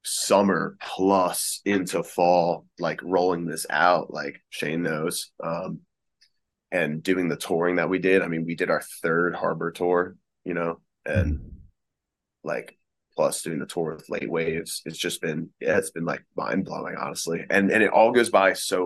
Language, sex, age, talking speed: English, male, 20-39, 170 wpm